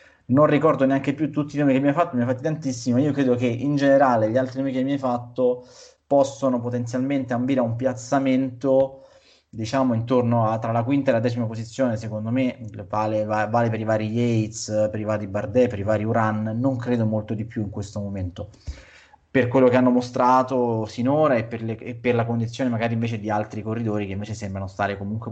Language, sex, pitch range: Italian, male, 110-130 Hz